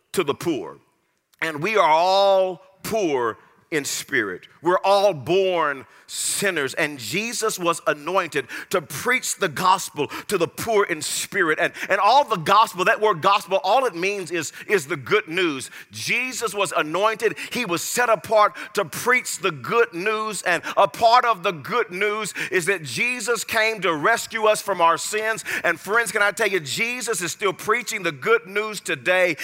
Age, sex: 40-59, male